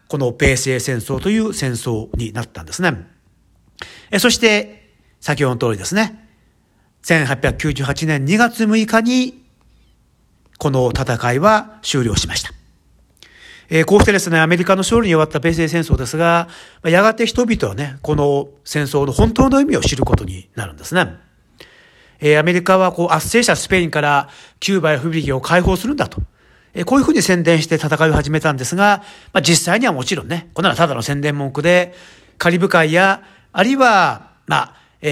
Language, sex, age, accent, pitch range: Japanese, male, 40-59, native, 140-195 Hz